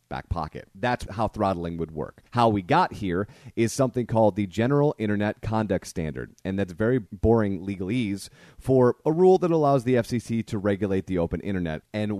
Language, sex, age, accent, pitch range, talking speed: English, male, 30-49, American, 90-120 Hz, 180 wpm